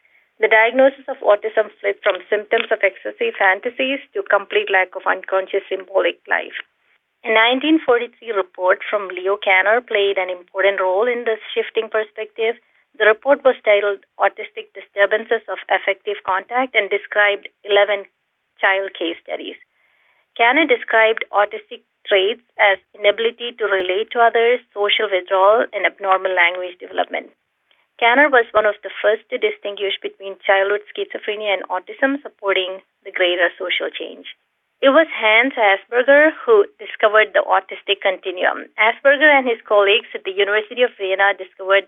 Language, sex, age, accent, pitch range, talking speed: English, female, 30-49, Indian, 195-235 Hz, 140 wpm